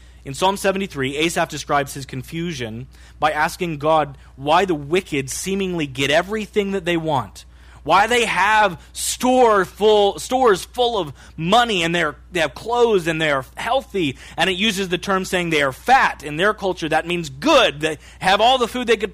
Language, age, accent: English, 30-49, American